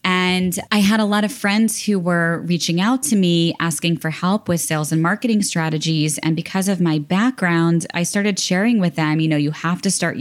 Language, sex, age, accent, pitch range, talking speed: English, female, 20-39, American, 155-190 Hz, 215 wpm